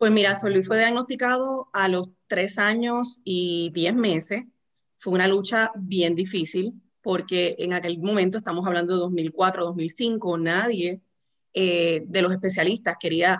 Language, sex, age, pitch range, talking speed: Spanish, female, 30-49, 175-200 Hz, 145 wpm